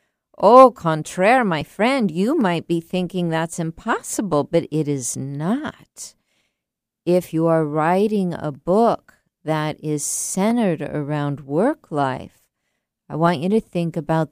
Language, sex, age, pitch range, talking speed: English, female, 50-69, 155-205 Hz, 135 wpm